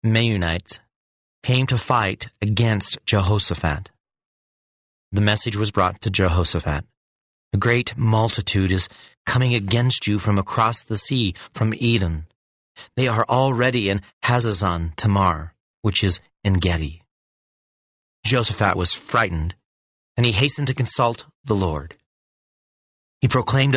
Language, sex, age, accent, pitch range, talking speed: English, male, 30-49, American, 95-120 Hz, 120 wpm